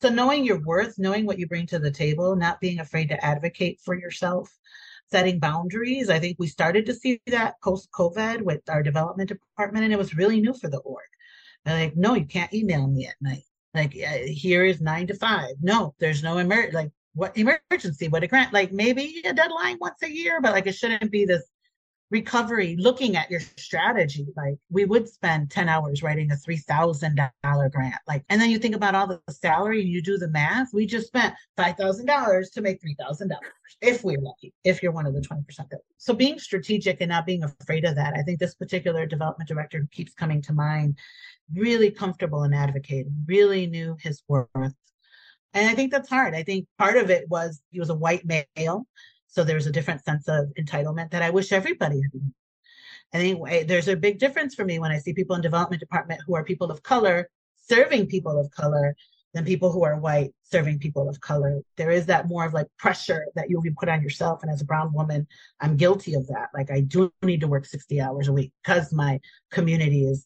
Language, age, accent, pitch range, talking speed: English, 40-59, American, 150-200 Hz, 210 wpm